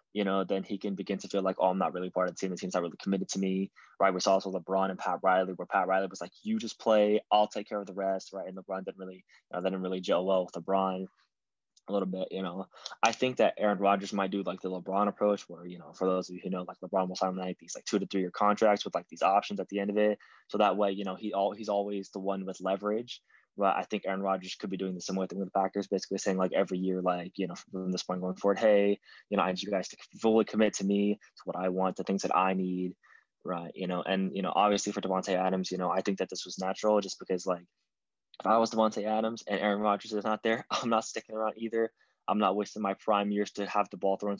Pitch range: 95-105 Hz